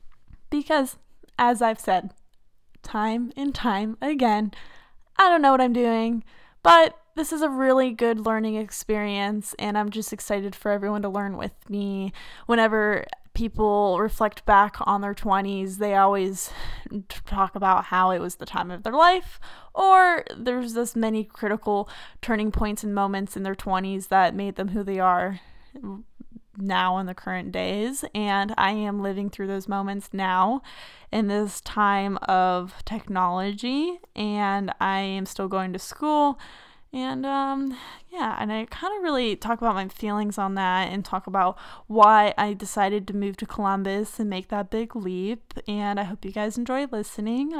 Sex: female